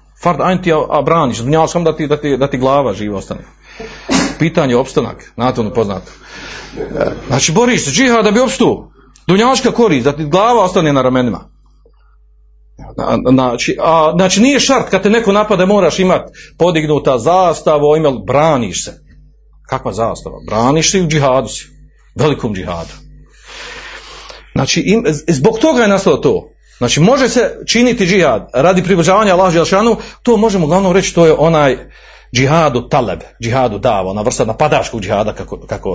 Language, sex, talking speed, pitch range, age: Croatian, male, 150 wpm, 115-180 Hz, 40-59